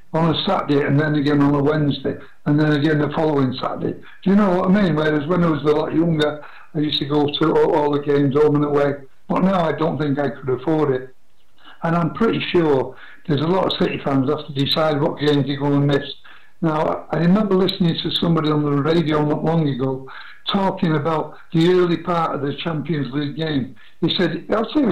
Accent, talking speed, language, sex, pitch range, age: British, 230 wpm, English, male, 145-175 Hz, 60-79